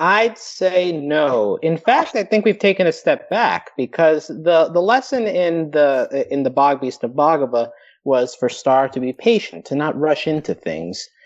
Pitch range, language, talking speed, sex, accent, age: 135-195 Hz, English, 185 wpm, male, American, 30-49